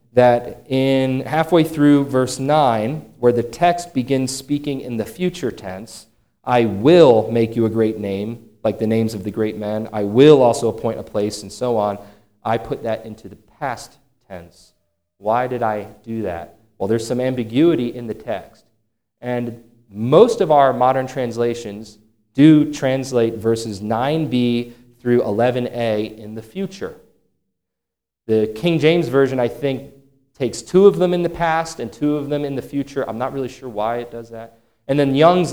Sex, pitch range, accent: male, 115-145 Hz, American